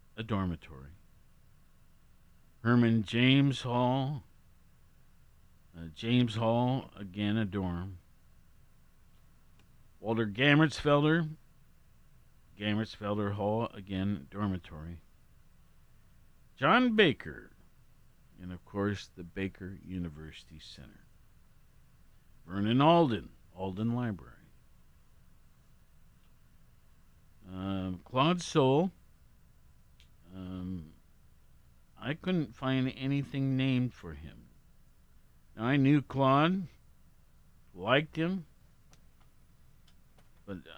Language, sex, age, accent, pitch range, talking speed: English, male, 50-69, American, 85-125 Hz, 70 wpm